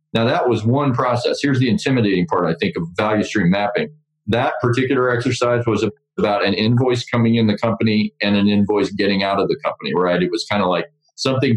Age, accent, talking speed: 40-59, American, 215 wpm